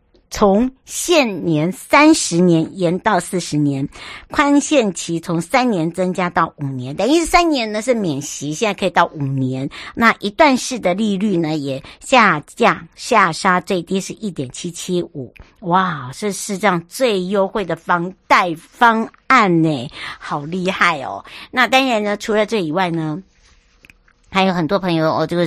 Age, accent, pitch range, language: 60-79, American, 165-210 Hz, Chinese